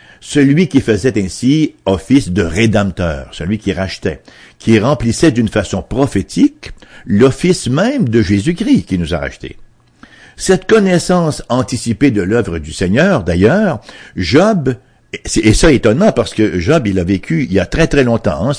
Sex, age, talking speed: male, 60-79, 150 wpm